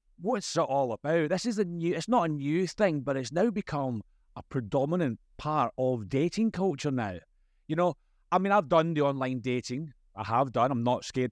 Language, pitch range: English, 95-135 Hz